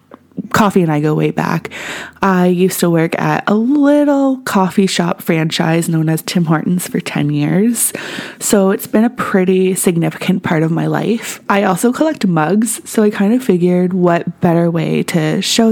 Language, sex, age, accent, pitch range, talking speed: English, female, 20-39, American, 170-225 Hz, 180 wpm